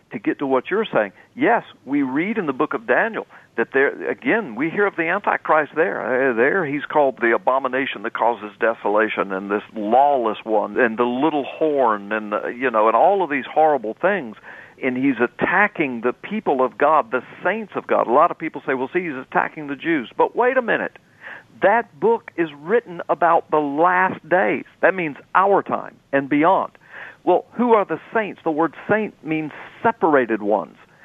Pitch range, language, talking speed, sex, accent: 145-215 Hz, English, 195 wpm, male, American